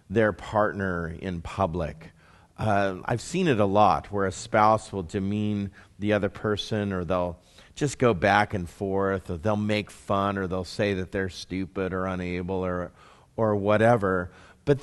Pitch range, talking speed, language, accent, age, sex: 95-130 Hz, 165 wpm, English, American, 40-59, male